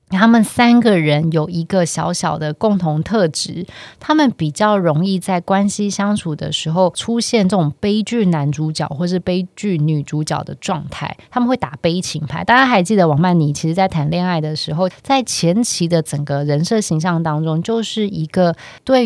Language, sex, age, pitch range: Chinese, female, 20-39, 155-190 Hz